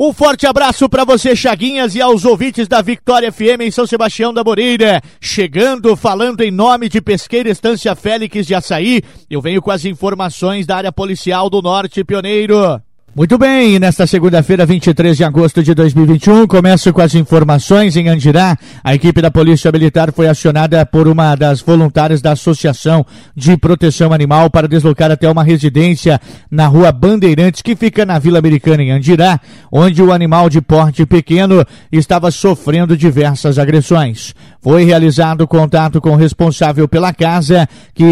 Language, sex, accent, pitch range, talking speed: Portuguese, male, Brazilian, 160-185 Hz, 160 wpm